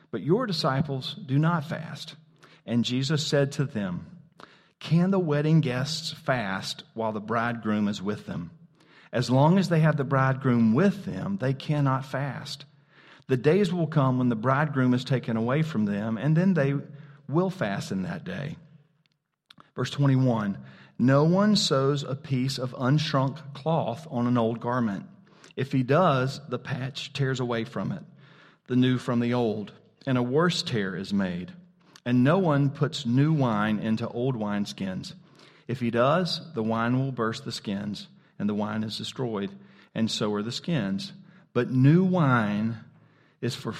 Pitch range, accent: 120-165 Hz, American